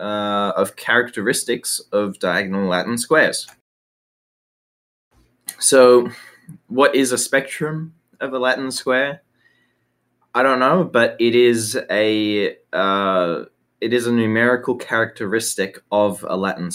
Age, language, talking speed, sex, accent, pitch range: 20-39, English, 115 wpm, male, Australian, 95-115 Hz